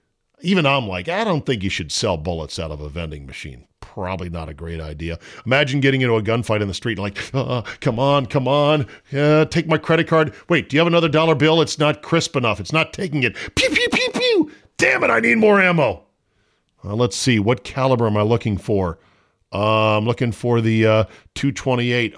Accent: American